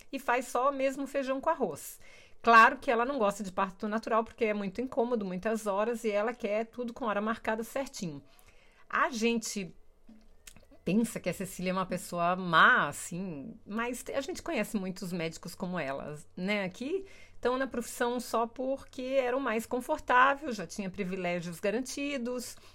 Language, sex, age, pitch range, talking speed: Portuguese, female, 40-59, 190-260 Hz, 165 wpm